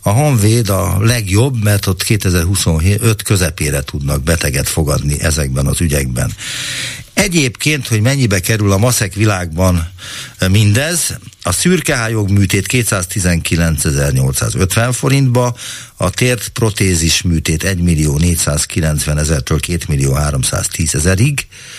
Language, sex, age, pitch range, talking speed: Hungarian, male, 50-69, 85-115 Hz, 90 wpm